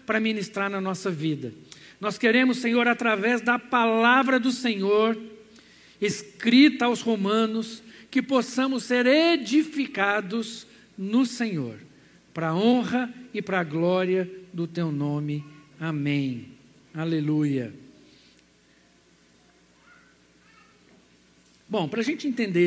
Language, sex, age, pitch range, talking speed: Portuguese, male, 60-79, 185-245 Hz, 105 wpm